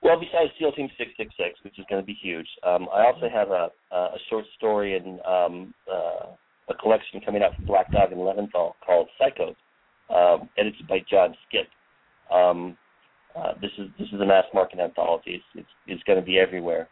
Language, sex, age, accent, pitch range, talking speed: English, male, 40-59, American, 90-105 Hz, 200 wpm